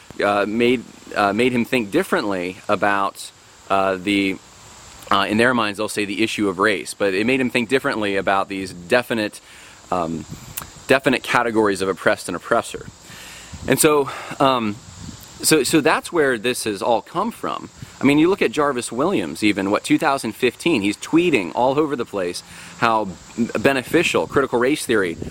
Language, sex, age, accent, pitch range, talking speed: English, male, 30-49, American, 100-130 Hz, 165 wpm